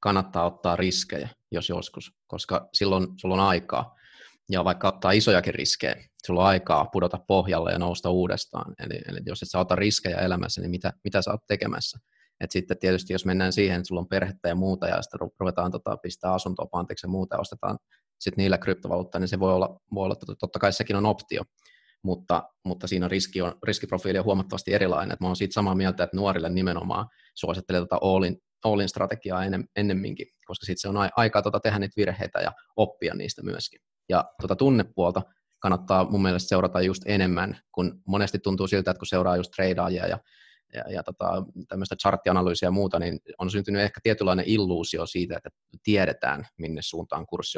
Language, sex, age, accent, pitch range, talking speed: Finnish, male, 30-49, native, 90-100 Hz, 185 wpm